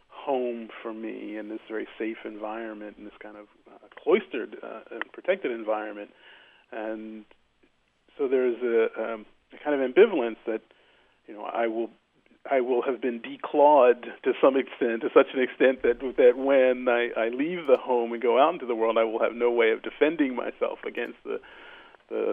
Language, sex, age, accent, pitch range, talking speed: English, male, 40-59, American, 110-160 Hz, 185 wpm